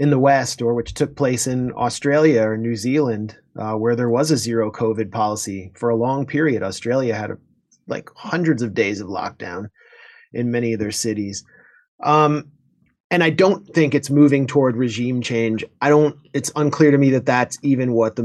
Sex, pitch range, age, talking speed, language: male, 110-140 Hz, 30-49, 195 wpm, English